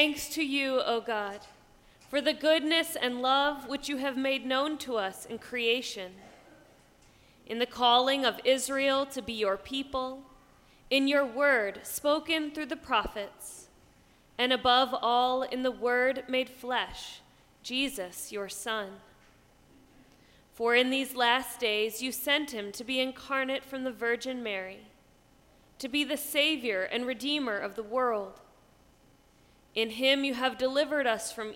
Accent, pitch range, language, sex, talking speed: American, 225-275 Hz, English, female, 145 wpm